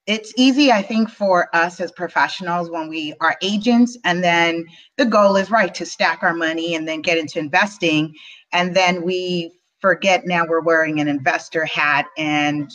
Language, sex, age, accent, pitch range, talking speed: English, female, 30-49, American, 165-215 Hz, 180 wpm